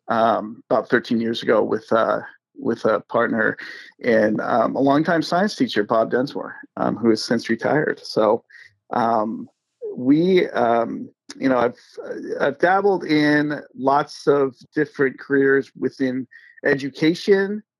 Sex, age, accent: male, 40-59, American